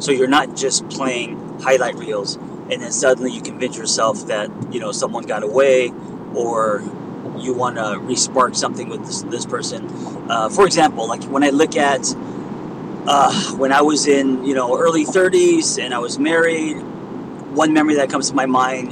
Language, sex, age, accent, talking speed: English, male, 30-49, American, 180 wpm